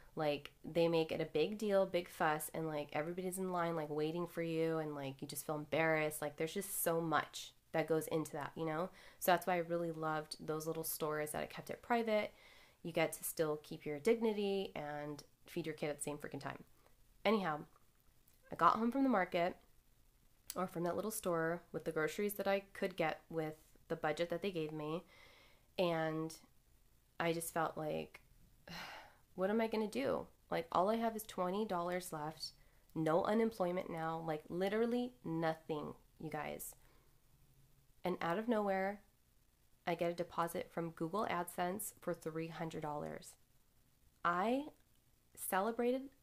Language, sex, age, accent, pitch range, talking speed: English, female, 20-39, American, 155-185 Hz, 170 wpm